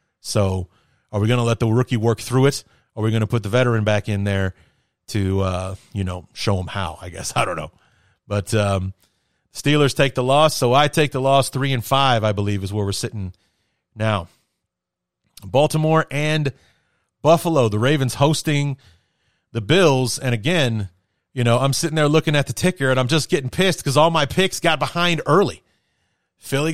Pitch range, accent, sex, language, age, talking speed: 105-155 Hz, American, male, English, 30-49, 195 wpm